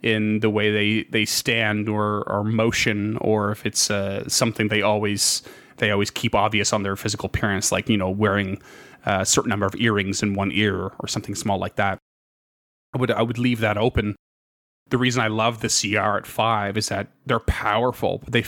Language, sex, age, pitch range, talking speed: English, male, 30-49, 105-115 Hz, 200 wpm